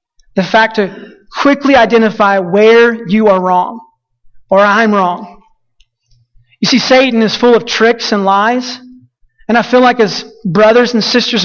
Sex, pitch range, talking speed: male, 195-225 Hz, 150 wpm